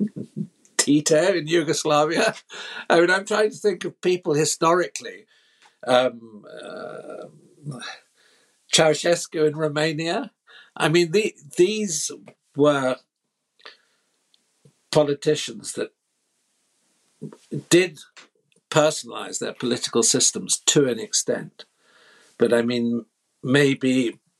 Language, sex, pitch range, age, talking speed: English, male, 125-170 Hz, 60-79, 85 wpm